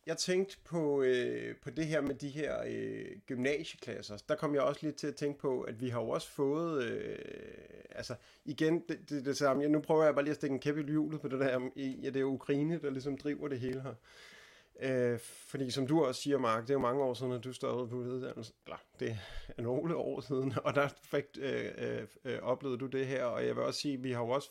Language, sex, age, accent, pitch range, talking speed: Danish, male, 30-49, native, 115-145 Hz, 255 wpm